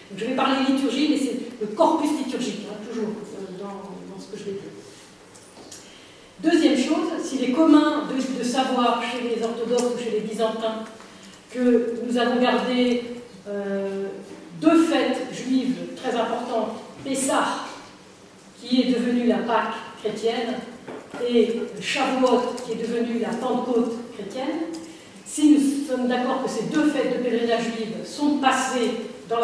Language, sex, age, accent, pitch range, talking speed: French, female, 40-59, French, 225-275 Hz, 150 wpm